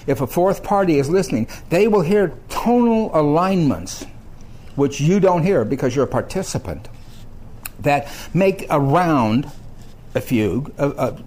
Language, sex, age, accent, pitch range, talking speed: English, male, 60-79, American, 115-155 Hz, 145 wpm